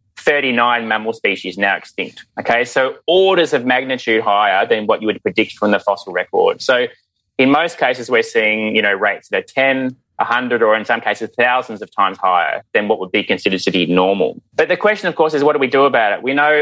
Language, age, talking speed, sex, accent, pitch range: English, 20-39, 225 wpm, male, Australian, 110-135 Hz